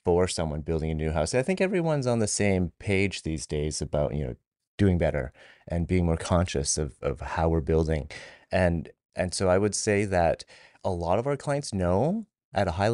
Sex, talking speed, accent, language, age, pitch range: male, 210 wpm, American, English, 30-49, 80-110 Hz